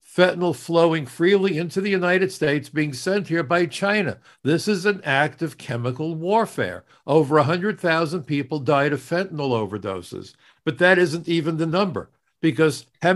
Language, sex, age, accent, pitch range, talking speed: English, male, 60-79, American, 140-175 Hz, 155 wpm